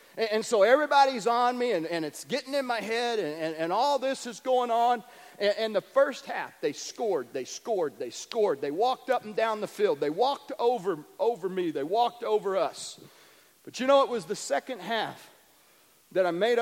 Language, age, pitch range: English, 40-59, 165-230 Hz